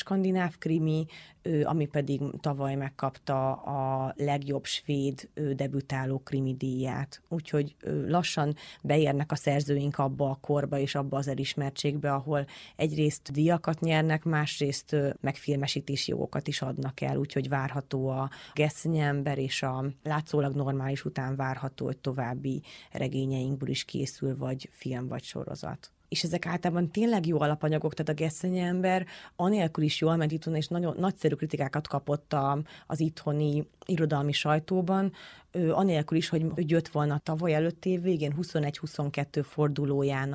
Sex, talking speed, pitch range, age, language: female, 130 wpm, 140-165 Hz, 30-49, Hungarian